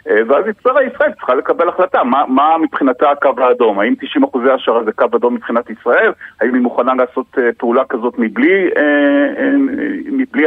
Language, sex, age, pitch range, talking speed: Hebrew, male, 40-59, 125-195 Hz, 165 wpm